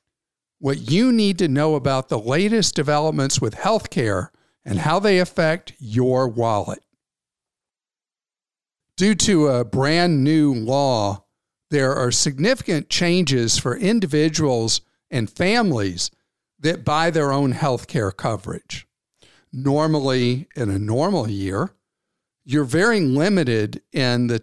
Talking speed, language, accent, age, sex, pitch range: 115 wpm, English, American, 50-69, male, 125-160 Hz